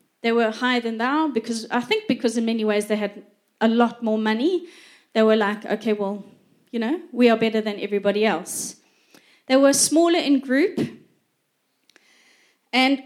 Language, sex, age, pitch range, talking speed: English, female, 30-49, 220-280 Hz, 170 wpm